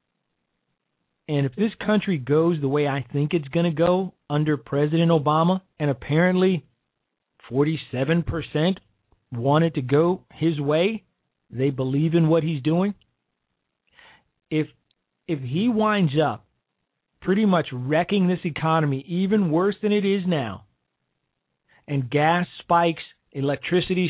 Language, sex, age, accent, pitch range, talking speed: English, male, 40-59, American, 150-185 Hz, 125 wpm